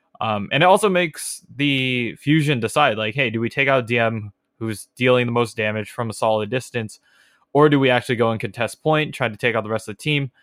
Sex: male